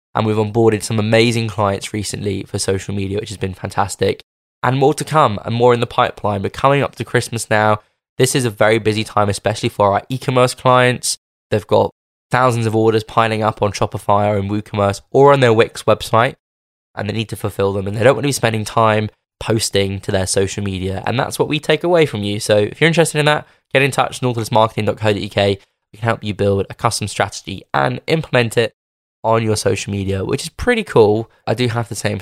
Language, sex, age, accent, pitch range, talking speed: English, male, 10-29, British, 105-125 Hz, 220 wpm